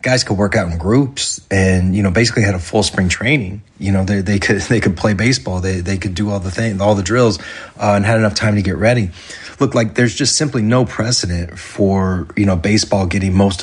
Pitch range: 95-110 Hz